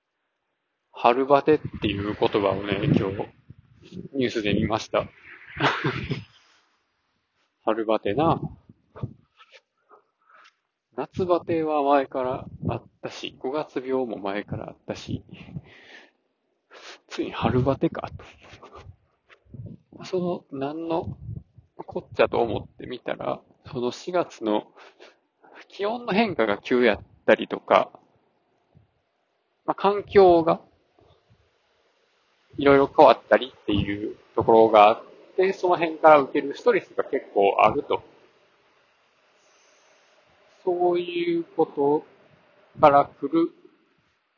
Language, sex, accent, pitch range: Japanese, male, native, 115-190 Hz